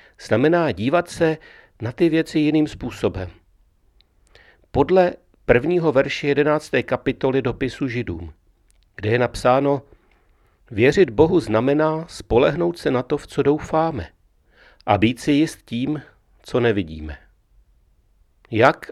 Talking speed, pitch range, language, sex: 115 wpm, 95-135 Hz, Czech, male